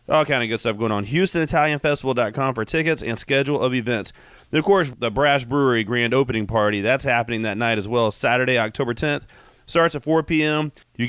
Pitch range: 120-155 Hz